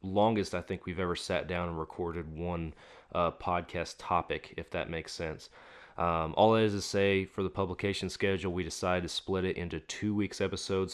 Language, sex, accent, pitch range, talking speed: English, male, American, 85-100 Hz, 195 wpm